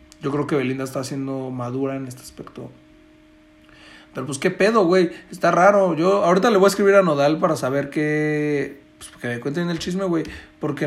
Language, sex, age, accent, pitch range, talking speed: Spanish, male, 40-59, Mexican, 130-175 Hz, 200 wpm